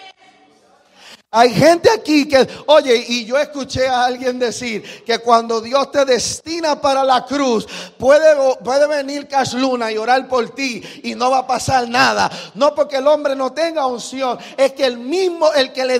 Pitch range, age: 240-290 Hz, 40-59